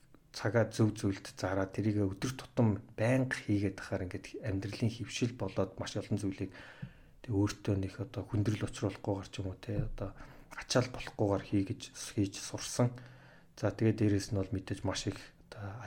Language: English